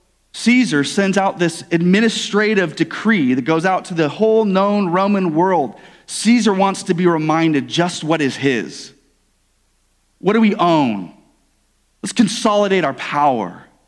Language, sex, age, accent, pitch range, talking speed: English, male, 30-49, American, 125-185 Hz, 140 wpm